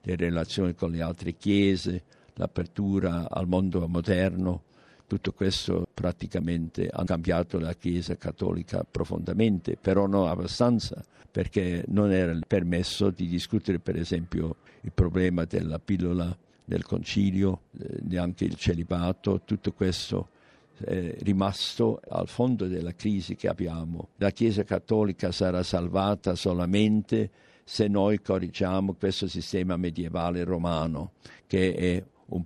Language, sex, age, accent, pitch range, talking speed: Italian, male, 60-79, native, 90-100 Hz, 120 wpm